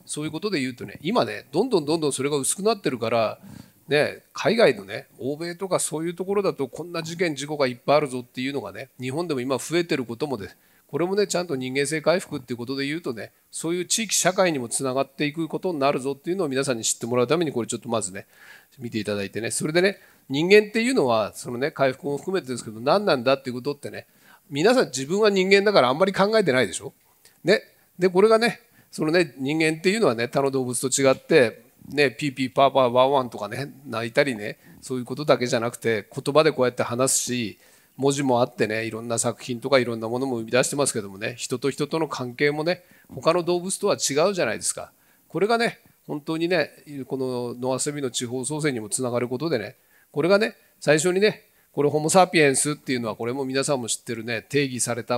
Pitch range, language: 125-160 Hz, Japanese